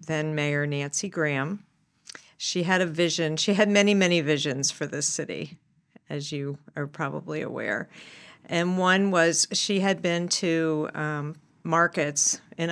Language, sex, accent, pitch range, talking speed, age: English, female, American, 155-180 Hz, 145 wpm, 50-69